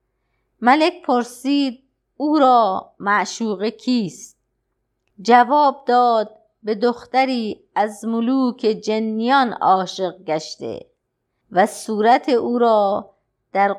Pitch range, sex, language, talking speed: 185-245 Hz, female, Persian, 85 wpm